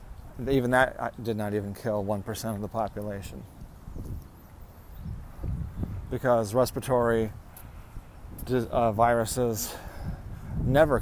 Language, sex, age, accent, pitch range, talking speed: English, male, 40-59, American, 95-125 Hz, 95 wpm